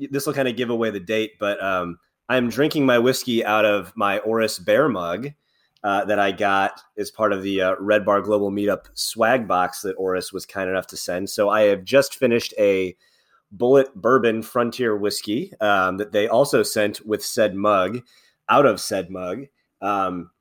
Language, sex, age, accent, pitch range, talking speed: English, male, 30-49, American, 95-125 Hz, 190 wpm